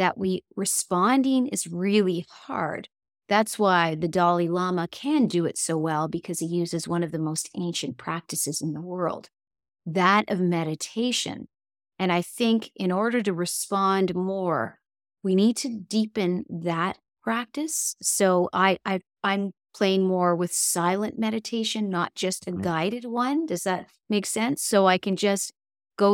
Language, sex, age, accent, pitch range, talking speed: English, female, 30-49, American, 170-200 Hz, 155 wpm